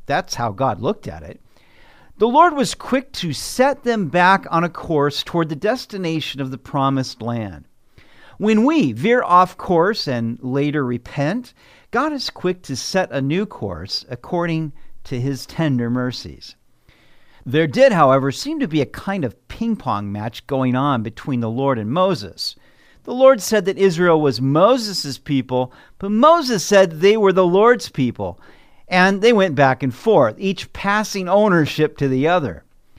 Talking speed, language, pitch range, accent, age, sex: 165 wpm, English, 135-205 Hz, American, 50-69, male